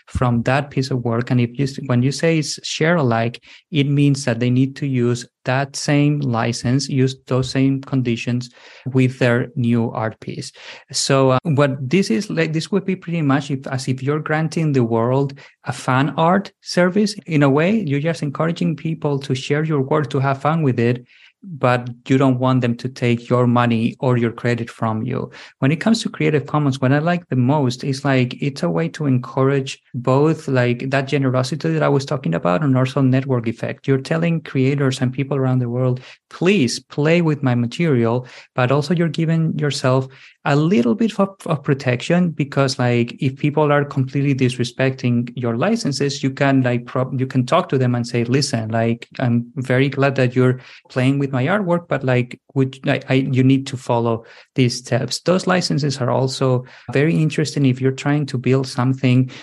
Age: 30-49